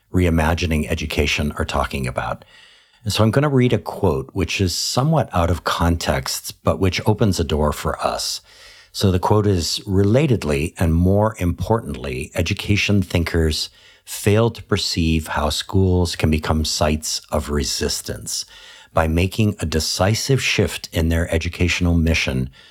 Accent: American